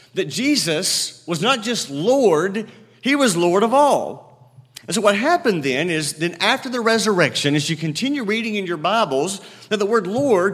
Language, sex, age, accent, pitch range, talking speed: English, male, 40-59, American, 130-190 Hz, 180 wpm